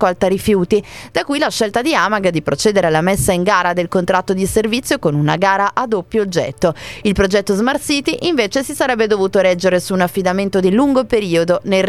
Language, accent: Italian, native